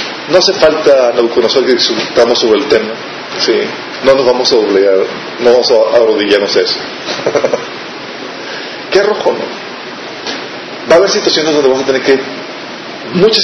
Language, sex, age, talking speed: Spanish, male, 40-59, 150 wpm